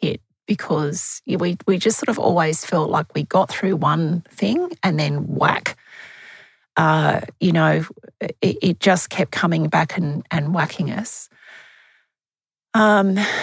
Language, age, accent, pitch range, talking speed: English, 30-49, Australian, 155-200 Hz, 140 wpm